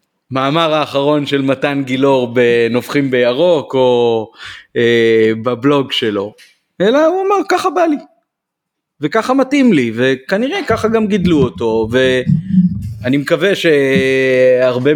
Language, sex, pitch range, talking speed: Hebrew, male, 125-170 Hz, 110 wpm